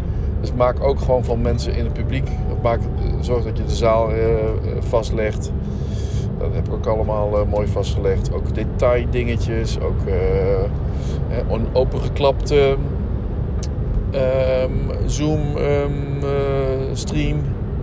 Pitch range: 95-125 Hz